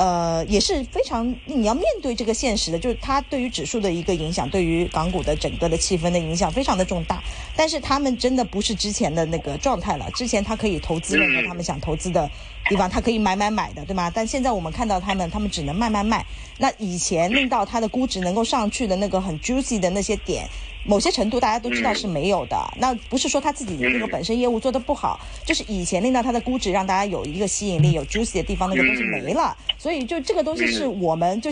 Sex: female